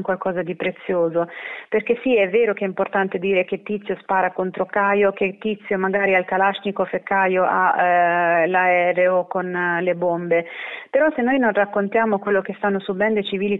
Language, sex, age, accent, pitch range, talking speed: Italian, female, 30-49, native, 185-210 Hz, 185 wpm